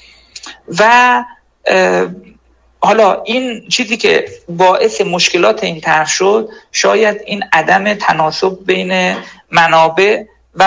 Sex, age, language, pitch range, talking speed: male, 50-69, Persian, 165-230 Hz, 95 wpm